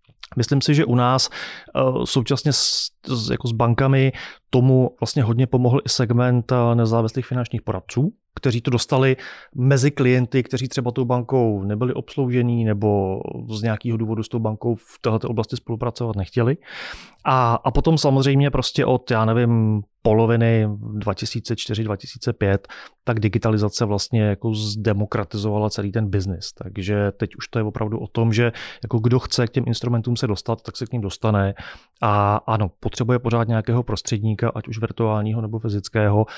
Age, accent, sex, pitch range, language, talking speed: 30-49, native, male, 110-130 Hz, Czech, 155 wpm